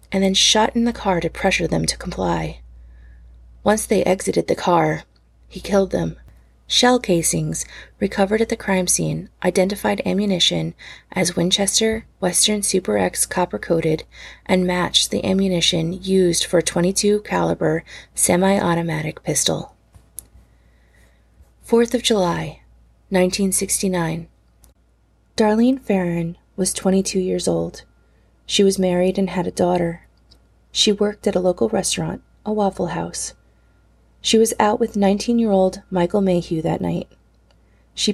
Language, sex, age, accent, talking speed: English, female, 30-49, American, 125 wpm